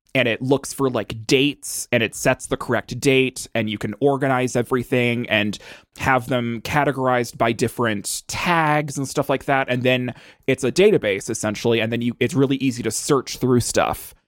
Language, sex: English, male